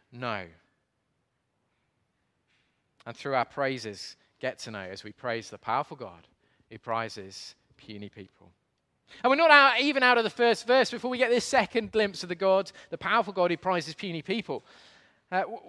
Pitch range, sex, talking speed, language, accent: 155-240 Hz, male, 170 wpm, English, British